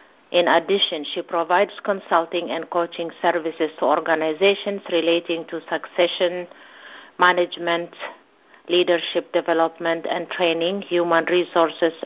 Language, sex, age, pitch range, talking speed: English, female, 50-69, 165-185 Hz, 100 wpm